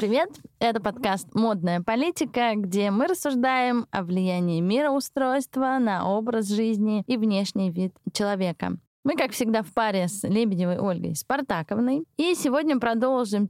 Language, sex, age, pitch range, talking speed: Russian, female, 20-39, 205-270 Hz, 135 wpm